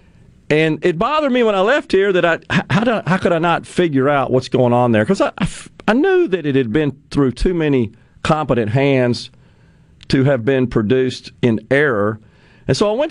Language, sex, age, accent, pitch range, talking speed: English, male, 40-59, American, 120-150 Hz, 215 wpm